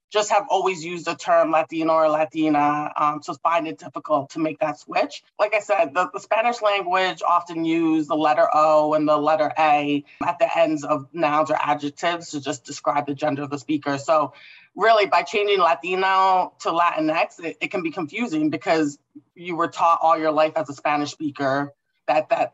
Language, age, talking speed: English, 20-39, 195 wpm